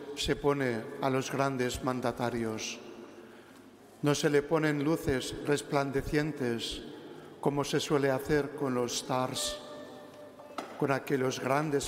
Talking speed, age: 110 wpm, 60-79